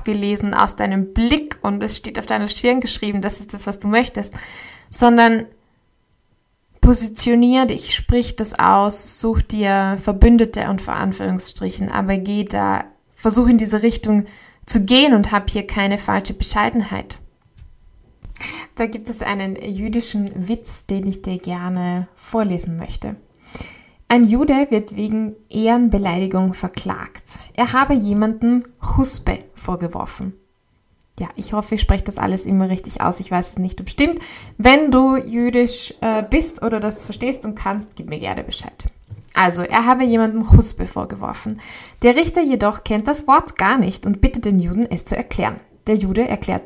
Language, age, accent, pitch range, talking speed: German, 20-39, German, 190-235 Hz, 155 wpm